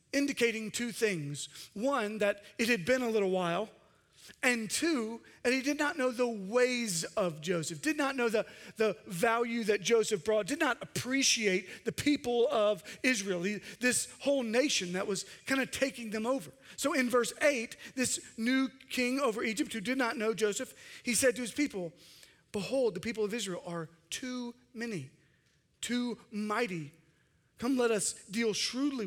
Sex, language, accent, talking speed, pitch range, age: male, English, American, 170 wpm, 185-250 Hz, 40-59